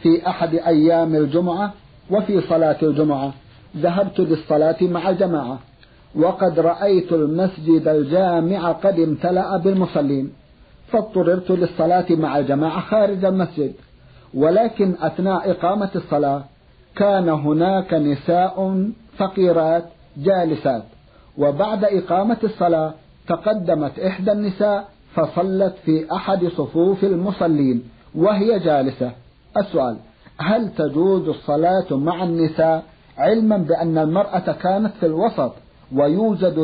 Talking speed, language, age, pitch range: 95 wpm, Arabic, 50-69, 150-190 Hz